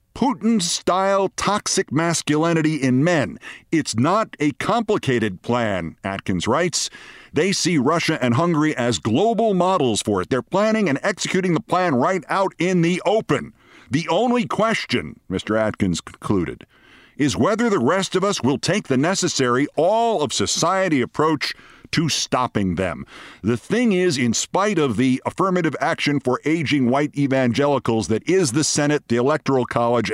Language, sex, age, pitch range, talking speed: English, male, 50-69, 120-175 Hz, 145 wpm